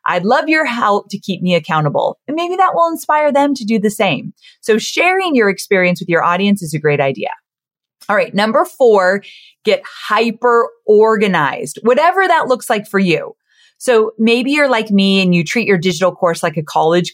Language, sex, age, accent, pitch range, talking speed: English, female, 30-49, American, 175-255 Hz, 195 wpm